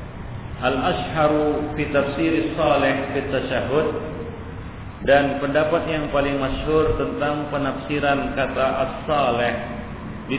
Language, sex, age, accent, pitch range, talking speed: Indonesian, male, 50-69, native, 115-140 Hz, 85 wpm